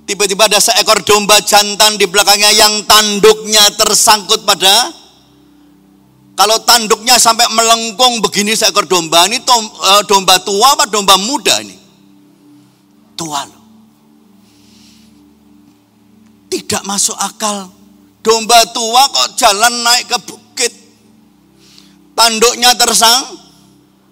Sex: male